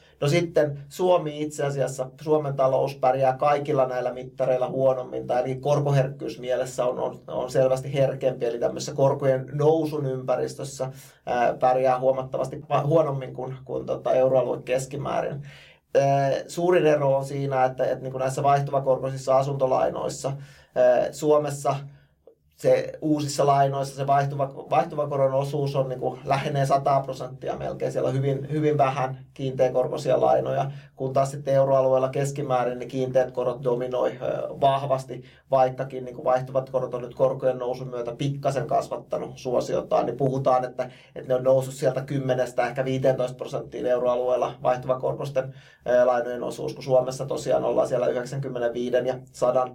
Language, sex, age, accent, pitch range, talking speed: Finnish, male, 30-49, native, 130-140 Hz, 135 wpm